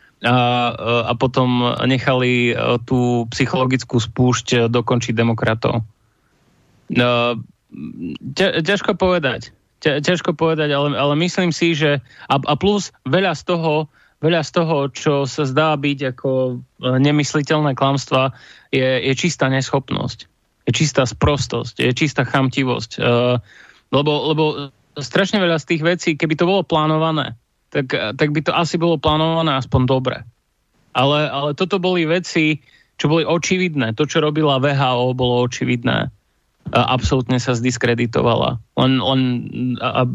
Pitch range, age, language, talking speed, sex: 125-155 Hz, 30-49, Slovak, 125 wpm, male